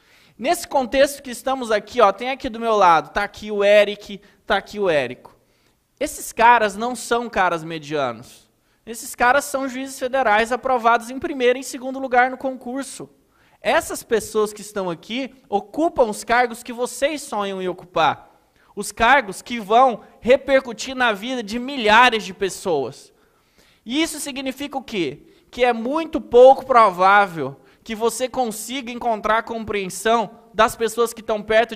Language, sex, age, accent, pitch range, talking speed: Portuguese, male, 20-39, Brazilian, 195-245 Hz, 155 wpm